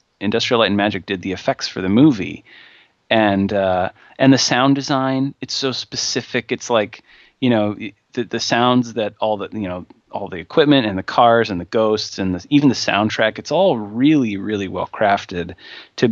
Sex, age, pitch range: male, 30-49, 100-125 Hz